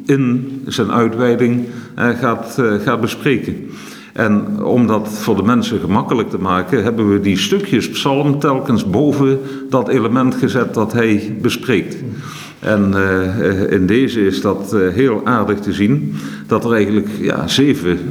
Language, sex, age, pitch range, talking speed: Dutch, male, 50-69, 100-120 Hz, 145 wpm